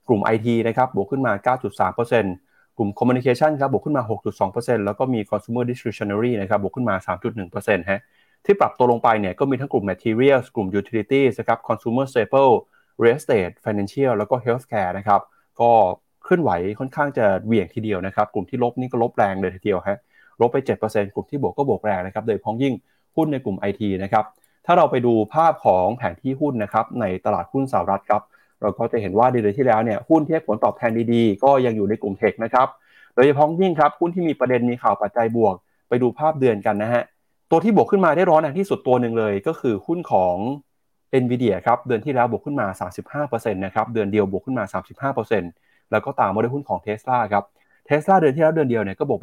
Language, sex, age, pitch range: Thai, male, 20-39, 105-135 Hz